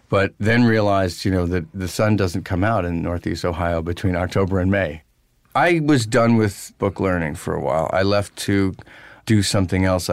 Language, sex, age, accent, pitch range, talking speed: English, male, 40-59, American, 95-115 Hz, 195 wpm